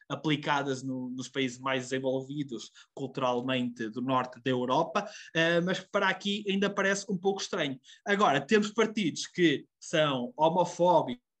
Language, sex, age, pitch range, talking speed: Portuguese, male, 20-39, 150-200 Hz, 130 wpm